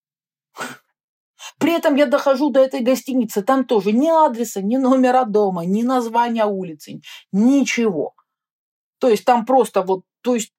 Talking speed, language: 140 wpm, Russian